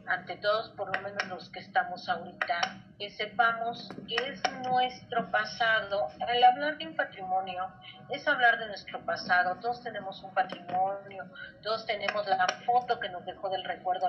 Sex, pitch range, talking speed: female, 185-235 Hz, 160 wpm